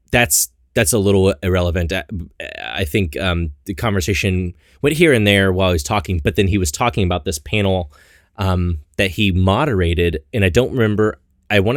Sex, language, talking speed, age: male, English, 190 wpm, 30-49